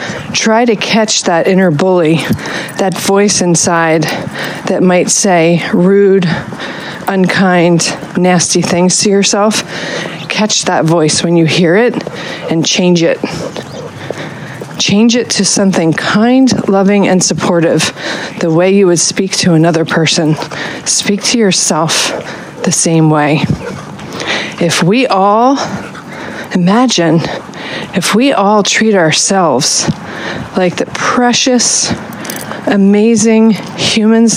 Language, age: English, 40-59